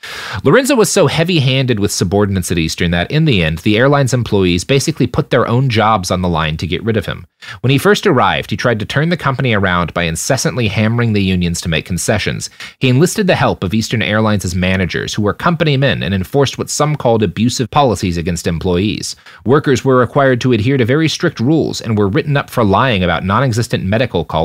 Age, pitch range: 30-49, 95-135 Hz